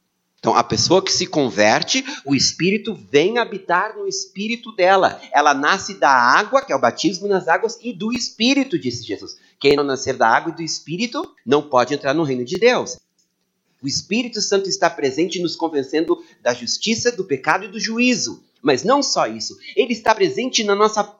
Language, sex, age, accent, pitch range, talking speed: Portuguese, male, 40-59, Brazilian, 135-225 Hz, 185 wpm